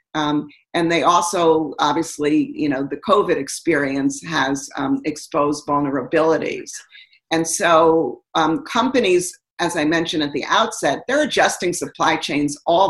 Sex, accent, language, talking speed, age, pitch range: female, American, English, 130 wpm, 50-69, 155-210 Hz